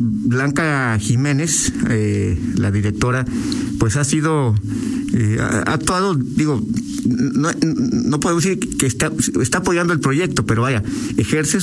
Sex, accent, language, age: male, Mexican, Spanish, 50-69